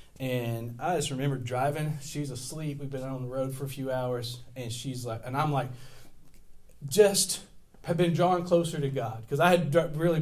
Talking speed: 195 wpm